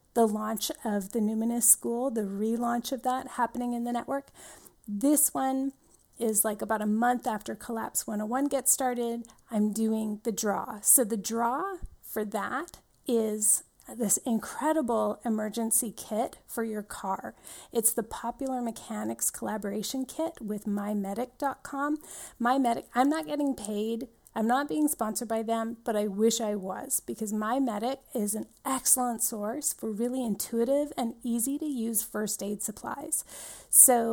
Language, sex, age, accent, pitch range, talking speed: English, female, 30-49, American, 215-265 Hz, 150 wpm